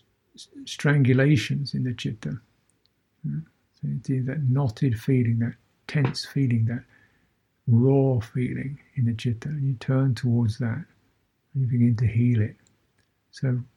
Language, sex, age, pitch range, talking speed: English, male, 60-79, 115-135 Hz, 125 wpm